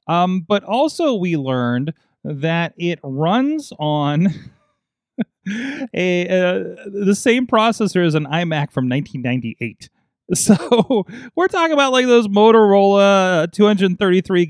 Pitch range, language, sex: 130-185 Hz, English, male